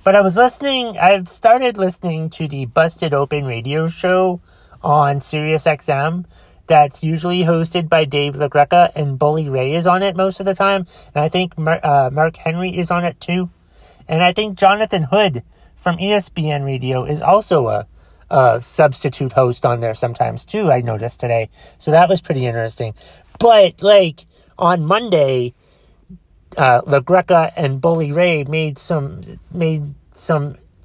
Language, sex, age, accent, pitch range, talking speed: English, male, 30-49, American, 125-185 Hz, 155 wpm